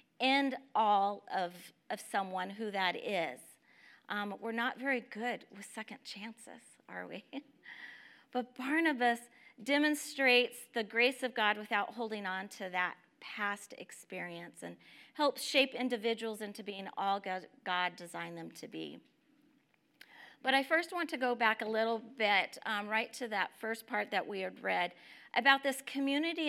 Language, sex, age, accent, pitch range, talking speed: English, female, 40-59, American, 200-270 Hz, 155 wpm